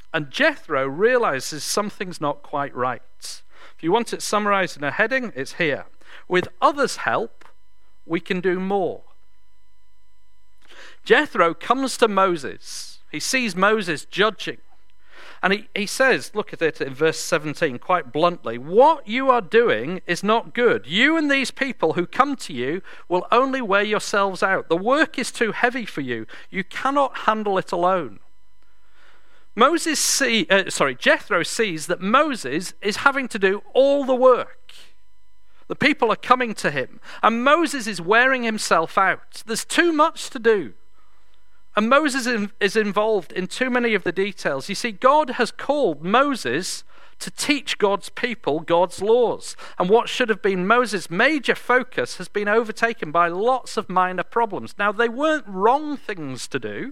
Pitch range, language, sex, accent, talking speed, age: 185-265 Hz, English, male, British, 160 wpm, 50-69